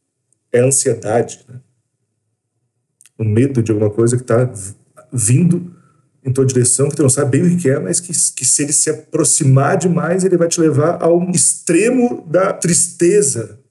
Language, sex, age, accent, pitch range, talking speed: Portuguese, male, 40-59, Brazilian, 125-160 Hz, 170 wpm